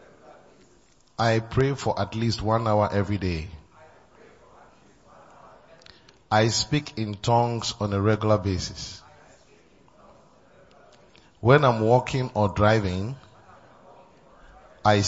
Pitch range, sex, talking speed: 105-125 Hz, male, 90 wpm